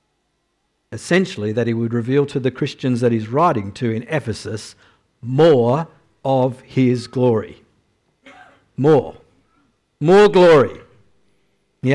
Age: 50-69